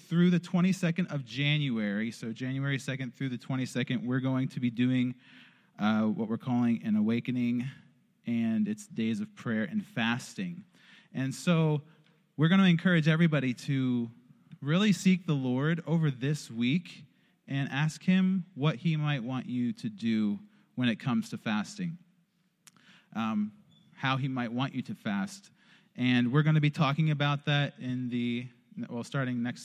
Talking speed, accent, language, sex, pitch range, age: 160 wpm, American, English, male, 125-180 Hz, 30-49